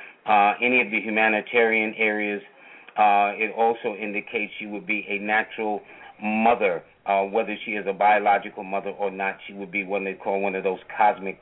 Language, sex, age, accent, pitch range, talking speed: English, male, 40-59, American, 100-115 Hz, 185 wpm